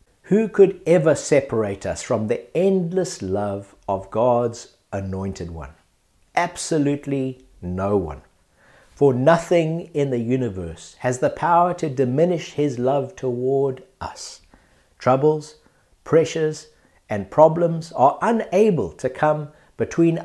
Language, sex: English, male